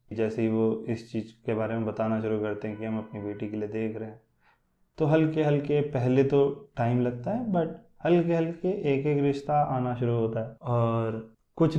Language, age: Hindi, 20-39